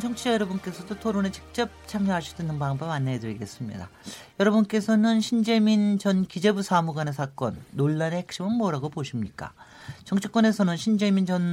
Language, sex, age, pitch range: Korean, male, 40-59, 145-205 Hz